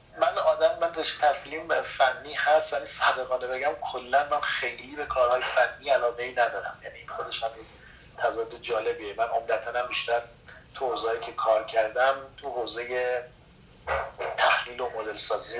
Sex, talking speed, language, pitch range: male, 145 wpm, Persian, 115-160 Hz